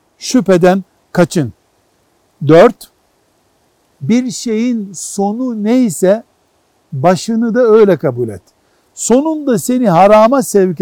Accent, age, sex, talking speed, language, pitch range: native, 60-79, male, 90 wpm, Turkish, 155-220 Hz